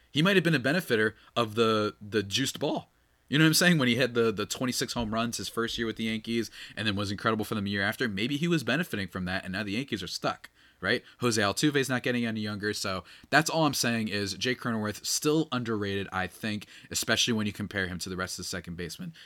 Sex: male